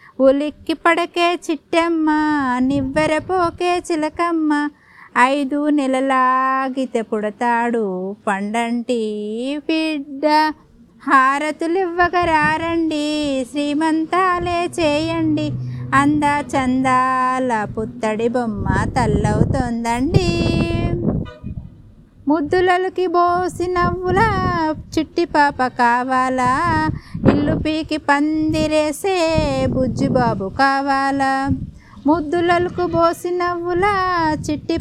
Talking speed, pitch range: 55 wpm, 255-325 Hz